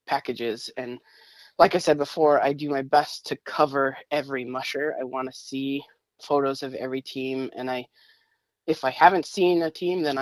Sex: female